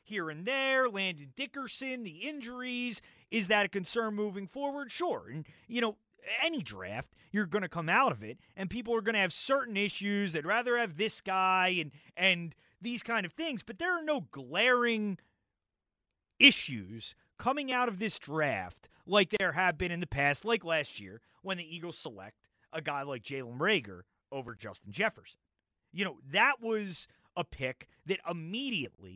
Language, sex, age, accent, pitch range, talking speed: English, male, 30-49, American, 145-235 Hz, 175 wpm